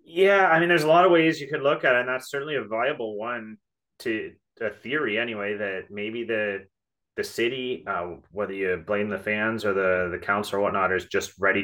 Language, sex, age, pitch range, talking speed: English, male, 30-49, 95-120 Hz, 220 wpm